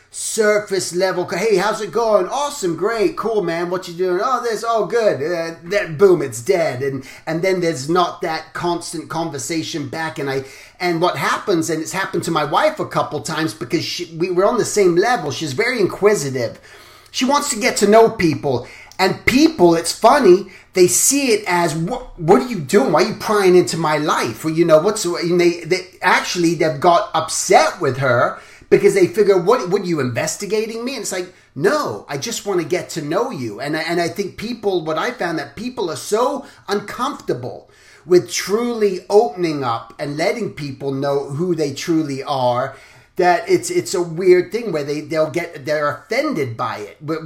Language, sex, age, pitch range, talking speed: English, male, 30-49, 160-215 Hz, 200 wpm